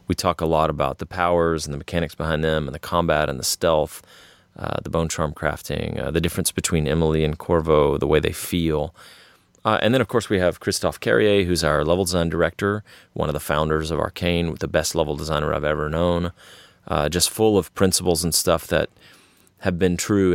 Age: 30-49